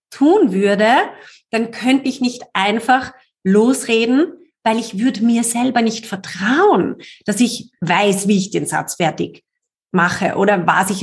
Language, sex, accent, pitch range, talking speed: German, female, German, 190-250 Hz, 145 wpm